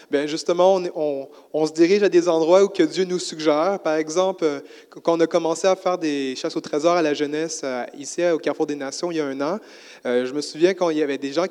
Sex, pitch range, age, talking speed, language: male, 150-185 Hz, 30-49, 260 wpm, French